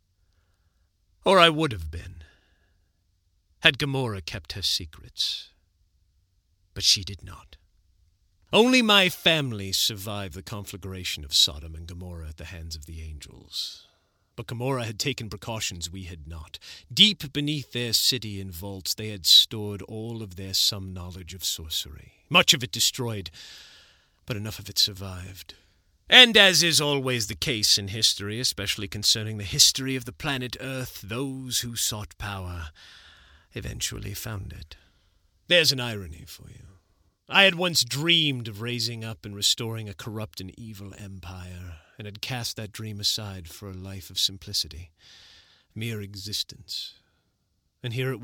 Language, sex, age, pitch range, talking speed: English, male, 40-59, 90-120 Hz, 150 wpm